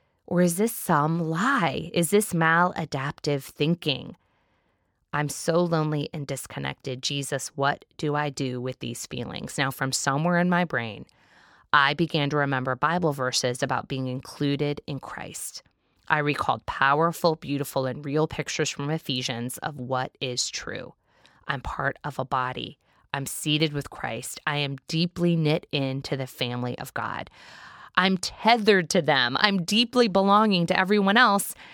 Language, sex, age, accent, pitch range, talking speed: English, female, 20-39, American, 140-200 Hz, 150 wpm